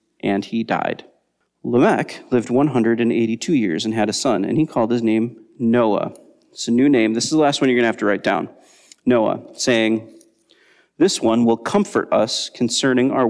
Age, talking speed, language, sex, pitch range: 30-49, 190 wpm, English, male, 110-125 Hz